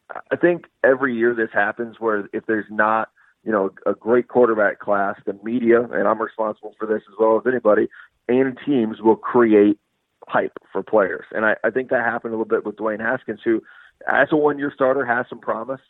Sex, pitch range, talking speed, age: male, 110-130 Hz, 205 wpm, 40-59